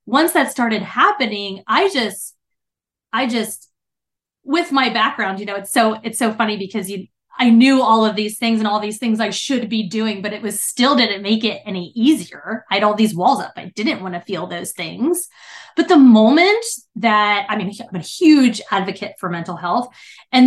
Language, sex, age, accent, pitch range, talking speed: English, female, 20-39, American, 200-260 Hz, 205 wpm